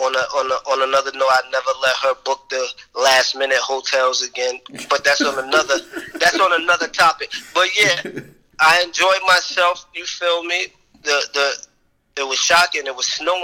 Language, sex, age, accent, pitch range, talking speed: English, male, 20-39, American, 130-155 Hz, 185 wpm